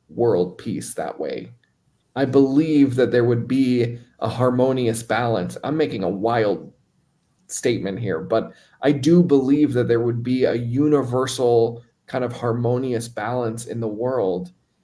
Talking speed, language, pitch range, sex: 145 wpm, English, 115-135 Hz, male